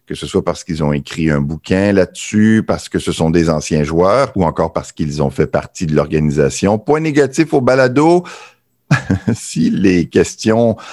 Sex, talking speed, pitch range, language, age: male, 180 wpm, 85-125 Hz, French, 50-69